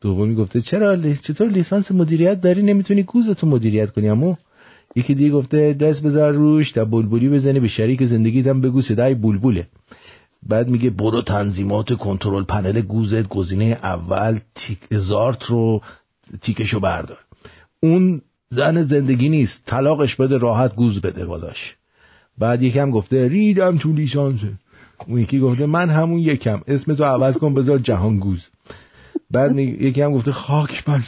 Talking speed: 150 wpm